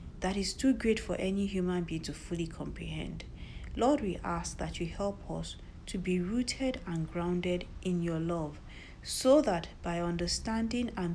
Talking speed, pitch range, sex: 165 wpm, 160-200 Hz, female